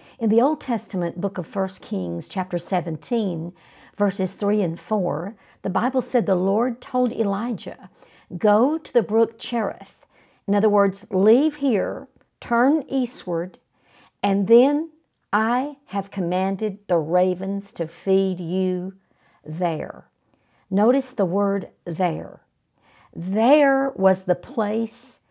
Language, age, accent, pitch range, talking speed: English, 60-79, American, 185-235 Hz, 125 wpm